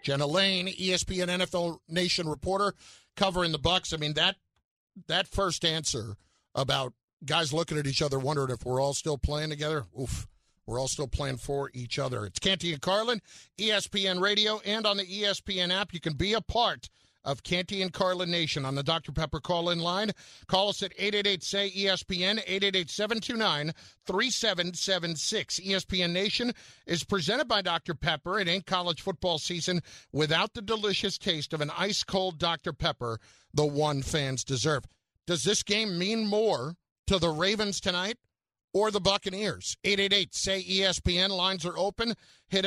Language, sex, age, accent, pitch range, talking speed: English, male, 50-69, American, 150-195 Hz, 170 wpm